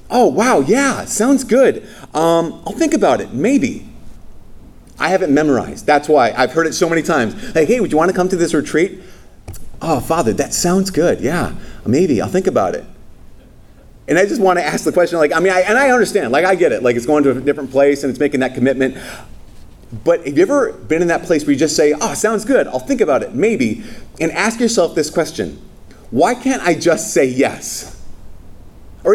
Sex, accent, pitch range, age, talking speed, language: male, American, 150-200 Hz, 30-49, 215 wpm, English